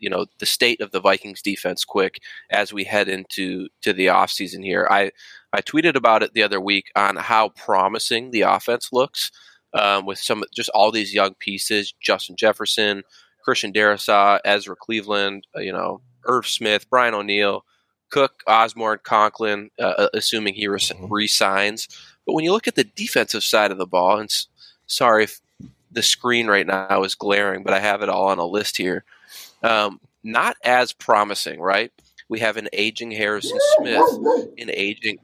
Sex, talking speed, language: male, 175 wpm, English